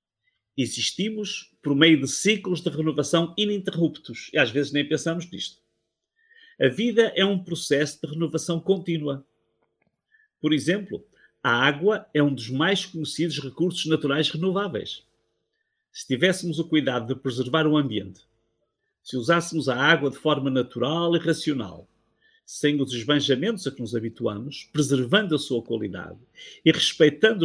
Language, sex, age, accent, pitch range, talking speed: Portuguese, male, 50-69, Brazilian, 135-175 Hz, 140 wpm